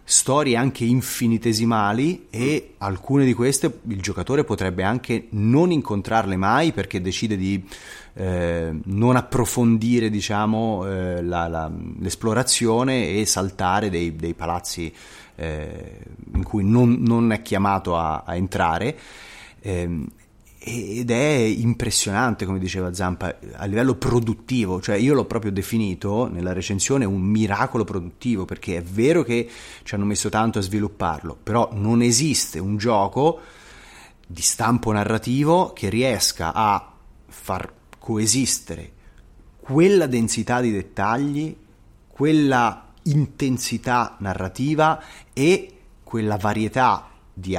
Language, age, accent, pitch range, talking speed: Italian, 30-49, native, 95-120 Hz, 120 wpm